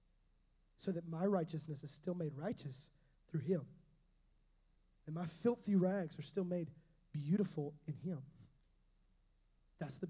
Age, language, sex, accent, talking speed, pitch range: 30-49, English, male, American, 130 wpm, 145-175 Hz